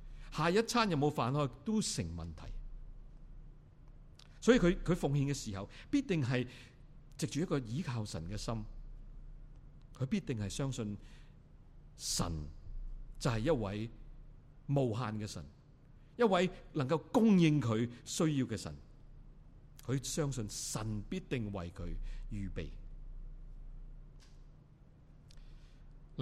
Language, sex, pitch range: Chinese, male, 110-150 Hz